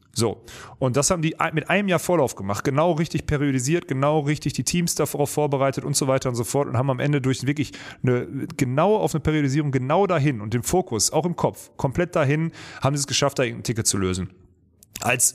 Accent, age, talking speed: German, 30-49, 220 wpm